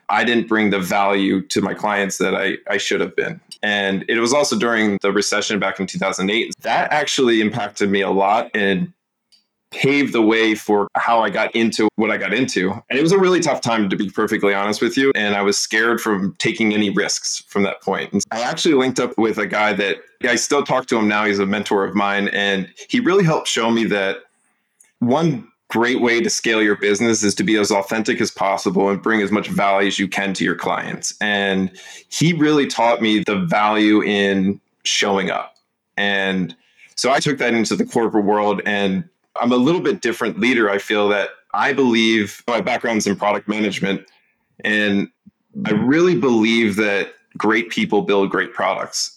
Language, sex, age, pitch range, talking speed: English, male, 20-39, 100-115 Hz, 200 wpm